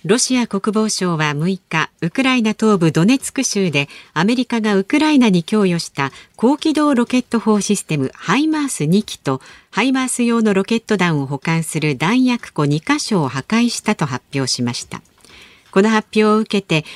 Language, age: Japanese, 50-69